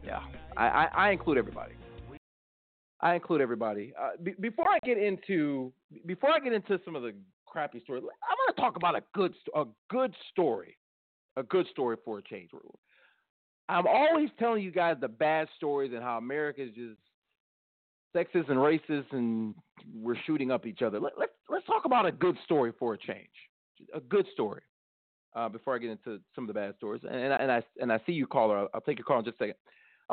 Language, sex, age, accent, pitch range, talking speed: English, male, 40-59, American, 120-195 Hz, 215 wpm